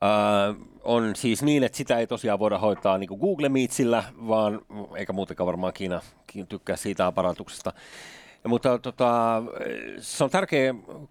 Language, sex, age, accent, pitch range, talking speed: Finnish, male, 30-49, native, 105-145 Hz, 145 wpm